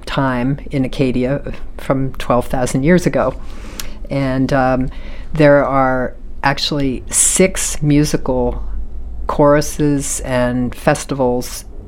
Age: 40-59